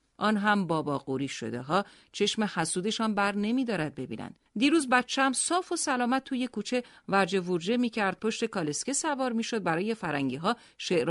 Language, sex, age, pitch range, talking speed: Persian, female, 40-59, 160-255 Hz, 165 wpm